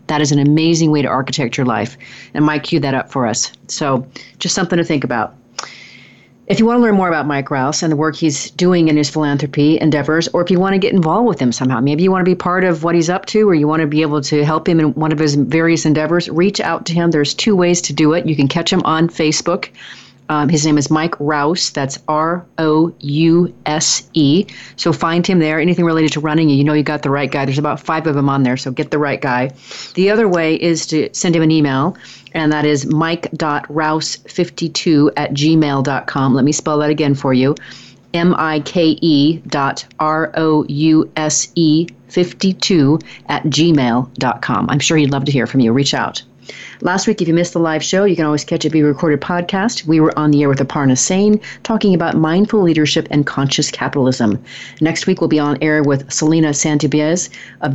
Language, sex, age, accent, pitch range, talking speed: English, female, 40-59, American, 140-170 Hz, 215 wpm